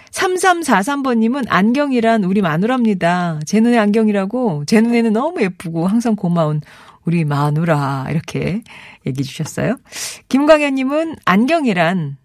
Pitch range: 165-250 Hz